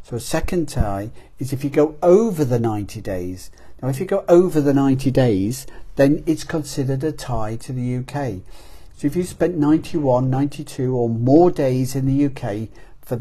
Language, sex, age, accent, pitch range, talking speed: English, male, 50-69, British, 110-145 Hz, 185 wpm